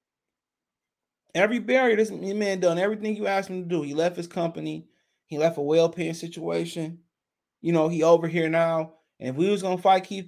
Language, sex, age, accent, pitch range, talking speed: English, male, 20-39, American, 155-210 Hz, 205 wpm